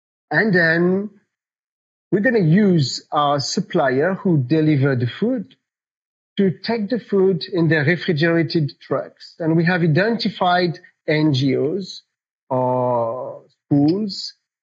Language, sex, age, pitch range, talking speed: English, male, 40-59, 140-185 Hz, 110 wpm